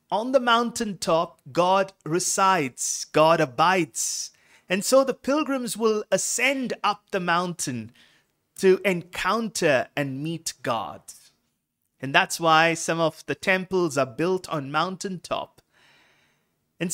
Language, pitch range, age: English, 155-205 Hz, 30-49